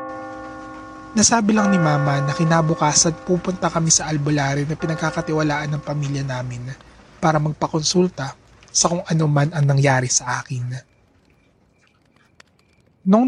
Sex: male